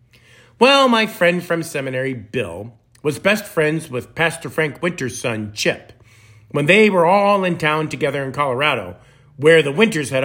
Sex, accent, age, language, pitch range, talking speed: male, American, 50-69, English, 120-185 Hz, 165 wpm